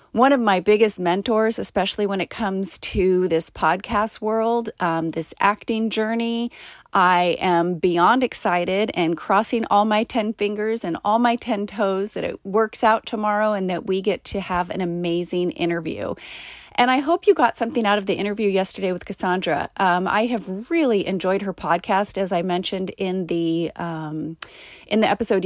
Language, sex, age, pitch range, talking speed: English, female, 30-49, 180-220 Hz, 175 wpm